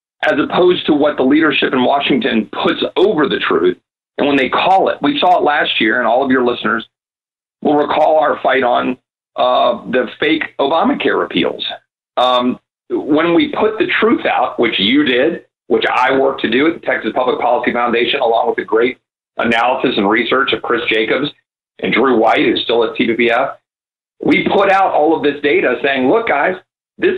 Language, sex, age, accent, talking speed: English, male, 50-69, American, 190 wpm